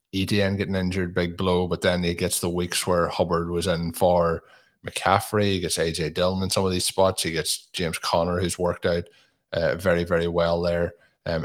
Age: 20-39